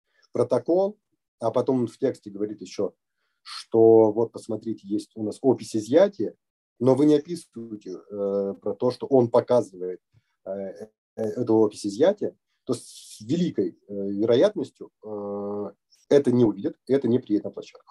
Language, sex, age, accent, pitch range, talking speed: Russian, male, 30-49, native, 100-130 Hz, 150 wpm